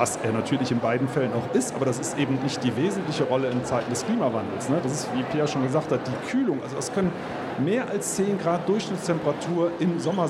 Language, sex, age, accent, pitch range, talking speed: German, male, 40-59, German, 140-180 Hz, 235 wpm